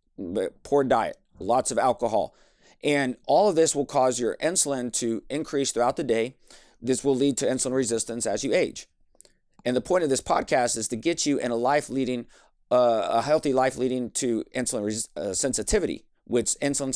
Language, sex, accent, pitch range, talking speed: English, male, American, 125-160 Hz, 185 wpm